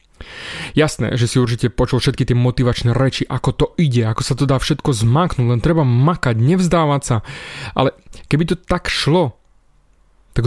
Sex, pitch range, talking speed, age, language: male, 120-155 Hz, 165 wpm, 30-49, Slovak